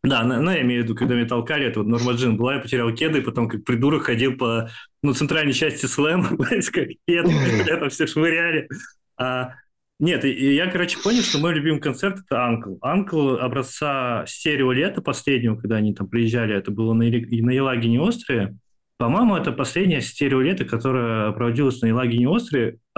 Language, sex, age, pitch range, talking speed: Russian, male, 20-39, 115-150 Hz, 165 wpm